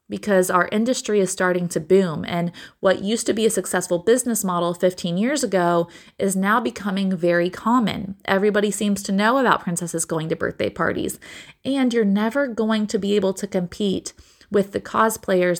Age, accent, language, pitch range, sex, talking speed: 20-39, American, English, 180-220 Hz, female, 175 wpm